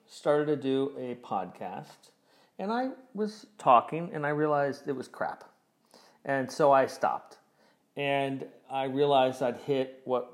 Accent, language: American, English